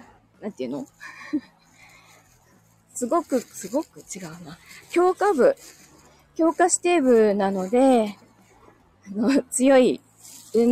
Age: 20-39